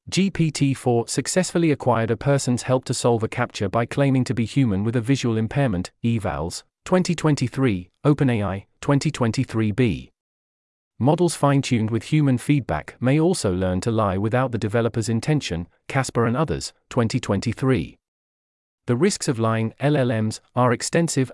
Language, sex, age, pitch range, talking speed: English, male, 40-59, 110-140 Hz, 135 wpm